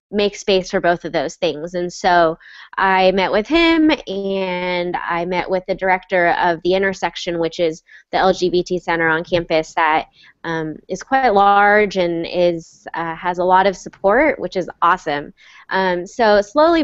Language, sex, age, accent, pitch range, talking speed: English, female, 20-39, American, 170-195 Hz, 170 wpm